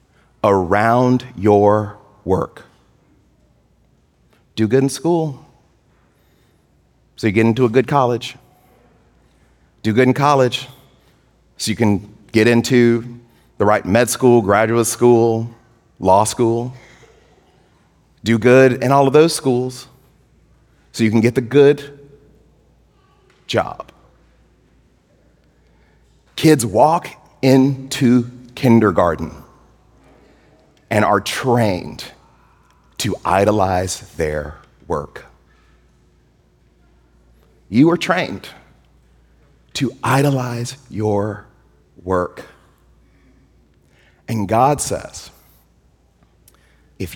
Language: English